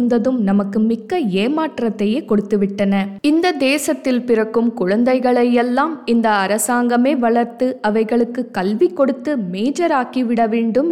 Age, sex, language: 20-39, female, Tamil